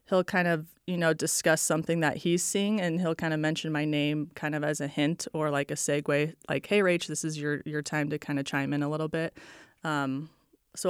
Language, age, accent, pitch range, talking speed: English, 20-39, American, 150-175 Hz, 240 wpm